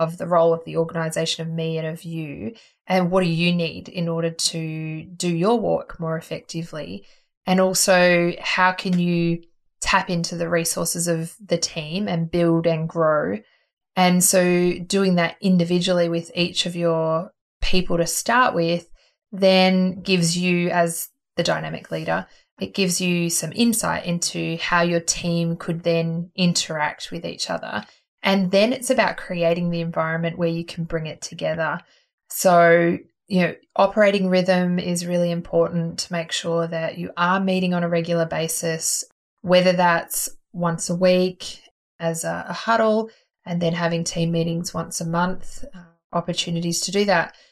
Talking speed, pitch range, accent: 165 wpm, 165-185 Hz, Australian